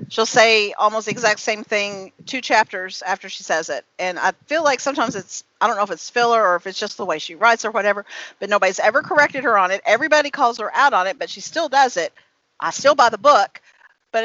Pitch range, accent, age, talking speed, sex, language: 190-260 Hz, American, 40-59, 250 wpm, female, English